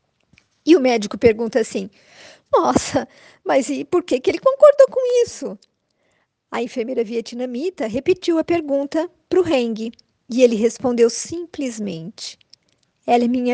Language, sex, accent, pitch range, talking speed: Portuguese, female, Brazilian, 235-315 Hz, 135 wpm